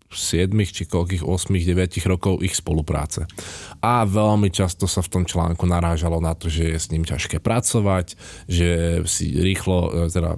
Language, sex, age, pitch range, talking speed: Slovak, male, 20-39, 90-105 Hz, 160 wpm